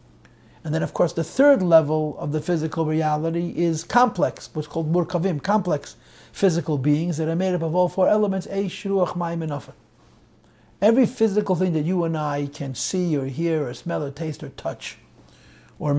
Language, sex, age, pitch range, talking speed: English, male, 50-69, 145-180 Hz, 170 wpm